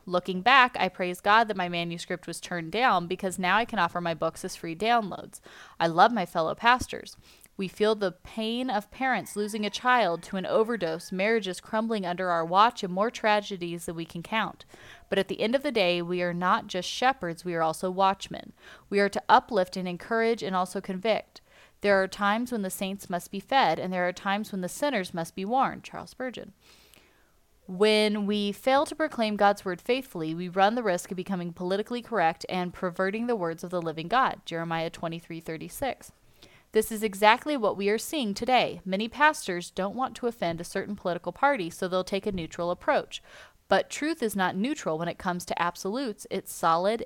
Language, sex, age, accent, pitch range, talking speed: English, female, 20-39, American, 180-225 Hz, 205 wpm